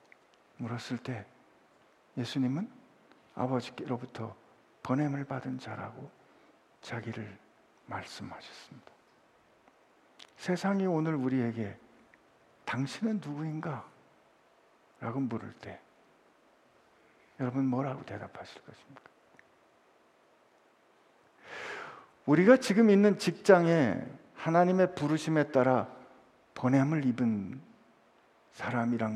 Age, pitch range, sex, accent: 60-79, 115-155 Hz, male, native